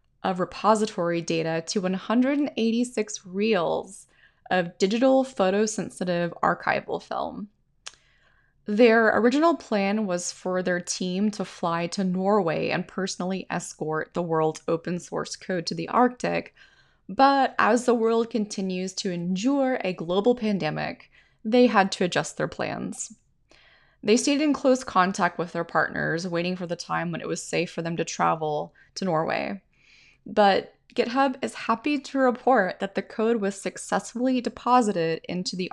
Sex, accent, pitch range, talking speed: female, American, 170-230 Hz, 145 wpm